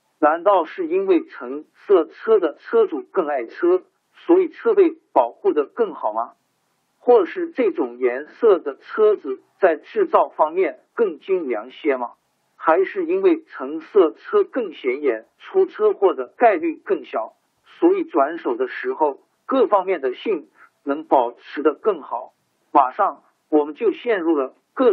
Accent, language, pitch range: native, Chinese, 320-400 Hz